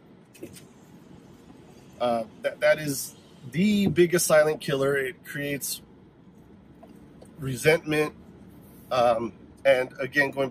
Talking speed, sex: 85 wpm, male